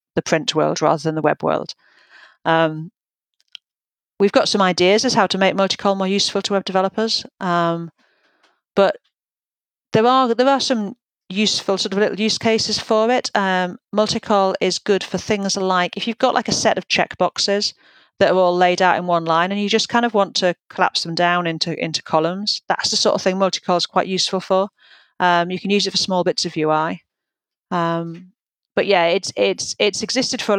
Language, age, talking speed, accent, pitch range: English, 40-59, 200 wpm, British, 165-205 Hz